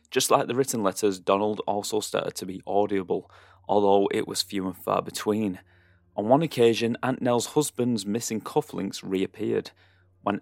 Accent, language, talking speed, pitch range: British, English, 160 wpm, 95-115 Hz